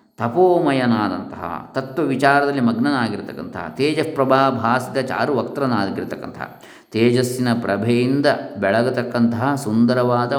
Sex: male